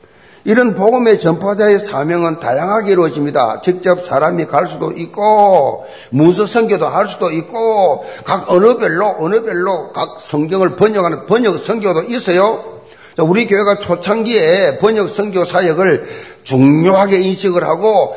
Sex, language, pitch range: male, Korean, 175-230 Hz